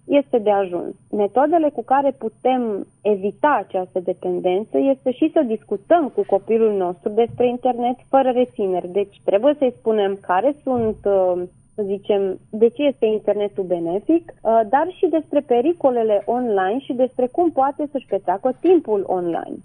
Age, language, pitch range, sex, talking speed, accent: 30-49, Romanian, 200-255 Hz, female, 145 wpm, native